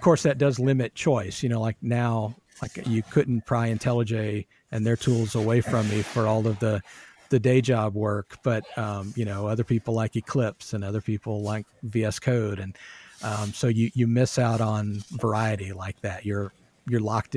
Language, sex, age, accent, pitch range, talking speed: English, male, 50-69, American, 105-125 Hz, 195 wpm